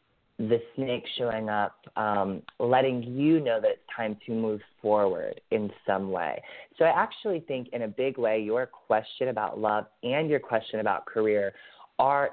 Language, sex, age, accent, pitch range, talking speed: English, male, 20-39, American, 105-125 Hz, 170 wpm